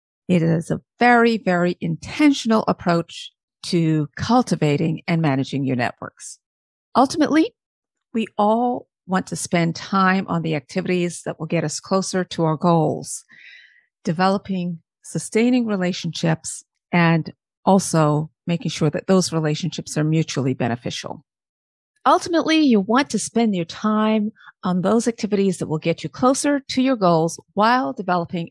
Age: 50-69